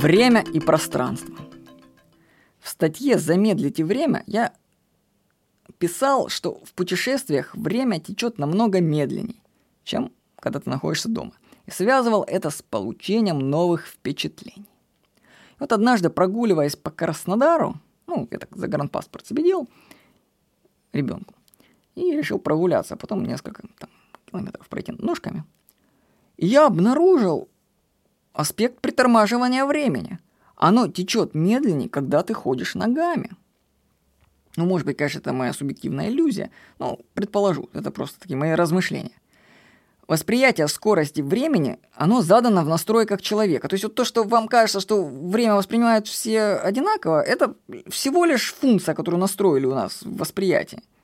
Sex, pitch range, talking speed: female, 170-240 Hz, 125 wpm